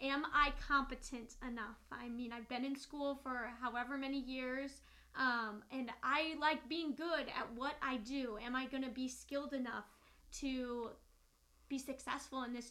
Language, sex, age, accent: English, female, 10-29, American